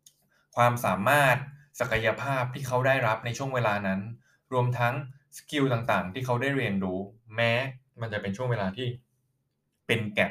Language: Thai